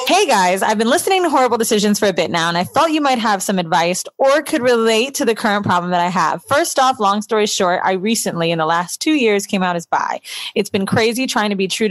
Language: English